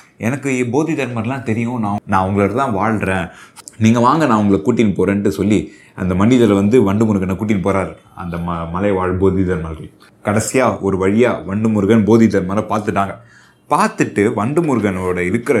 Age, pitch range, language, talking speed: 20-39, 95-115 Hz, Tamil, 135 wpm